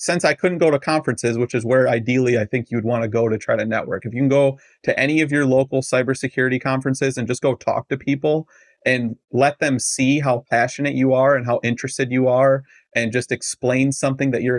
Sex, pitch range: male, 120-140 Hz